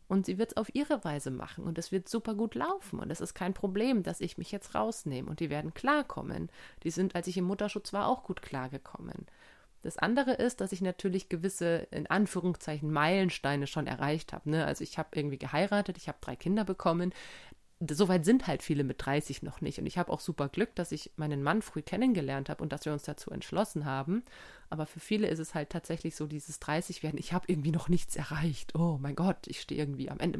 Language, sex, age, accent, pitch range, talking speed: German, female, 30-49, German, 155-205 Hz, 225 wpm